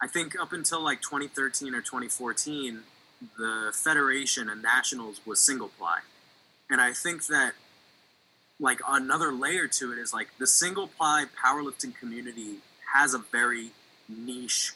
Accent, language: American, English